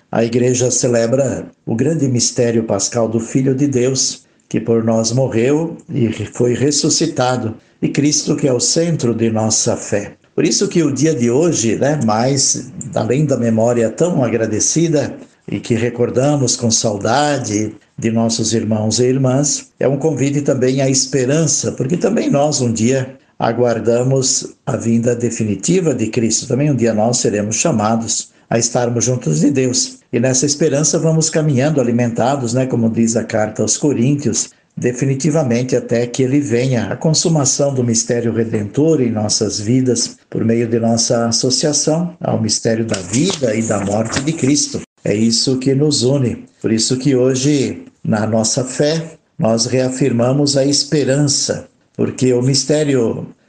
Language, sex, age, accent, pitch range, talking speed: Portuguese, male, 60-79, Brazilian, 115-140 Hz, 155 wpm